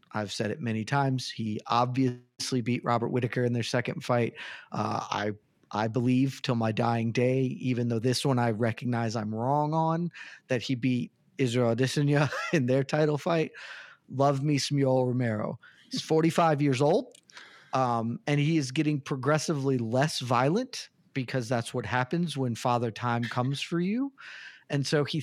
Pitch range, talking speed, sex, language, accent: 125-150 Hz, 165 wpm, male, English, American